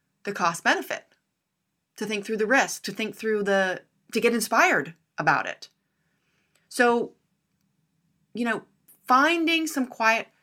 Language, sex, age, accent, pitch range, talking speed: English, female, 30-49, American, 155-210 Hz, 130 wpm